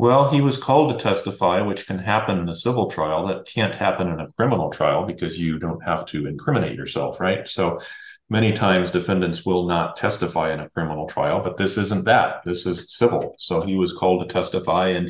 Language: English